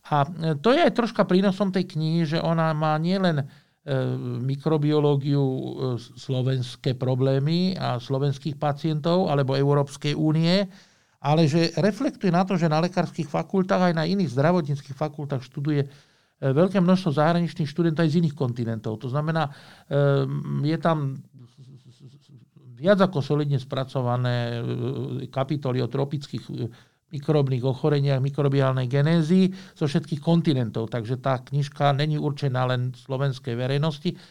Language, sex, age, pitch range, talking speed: Slovak, male, 50-69, 130-160 Hz, 130 wpm